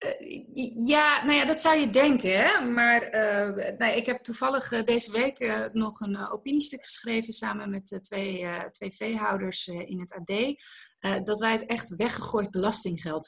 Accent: Dutch